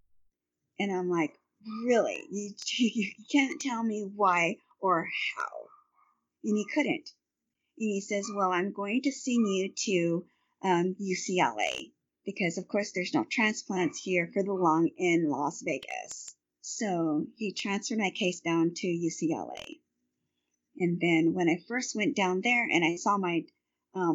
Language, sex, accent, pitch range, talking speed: English, female, American, 170-235 Hz, 150 wpm